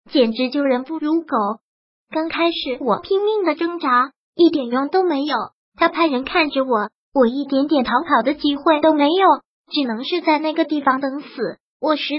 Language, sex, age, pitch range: Chinese, male, 20-39, 260-325 Hz